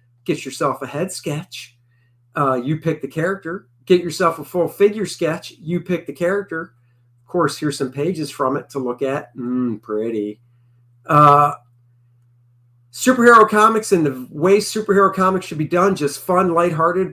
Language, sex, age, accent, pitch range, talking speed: English, male, 50-69, American, 130-180 Hz, 160 wpm